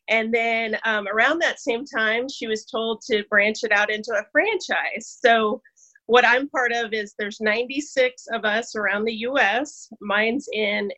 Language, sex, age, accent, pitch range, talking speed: English, female, 30-49, American, 215-255 Hz, 175 wpm